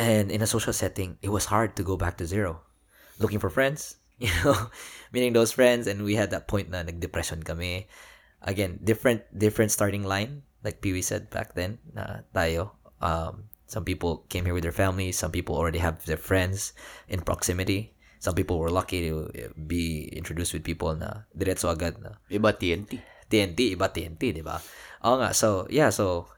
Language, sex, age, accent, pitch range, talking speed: Filipino, male, 20-39, native, 85-105 Hz, 180 wpm